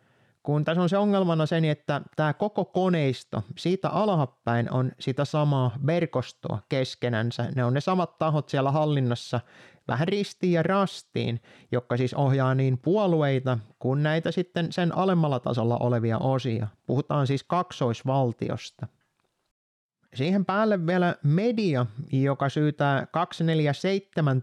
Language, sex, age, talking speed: Finnish, male, 30-49, 125 wpm